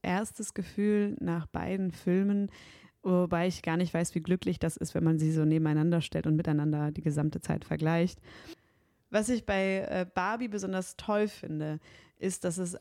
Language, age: German, 20-39